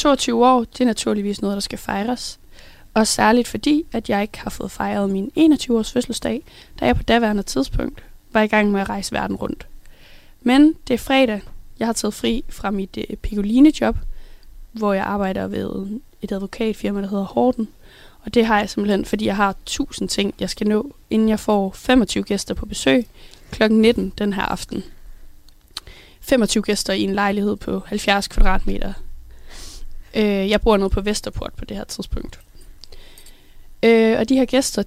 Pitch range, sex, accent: 195-240 Hz, female, native